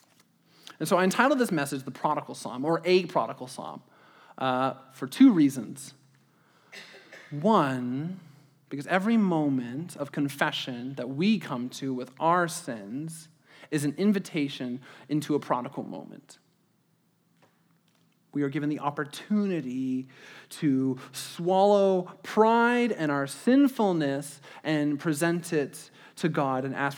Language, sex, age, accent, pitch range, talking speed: English, male, 30-49, American, 150-245 Hz, 120 wpm